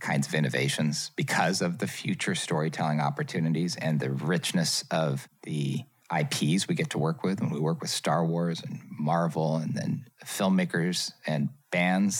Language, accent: English, American